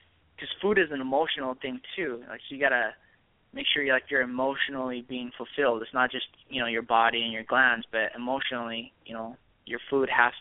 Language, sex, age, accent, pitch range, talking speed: English, male, 20-39, American, 120-135 Hz, 210 wpm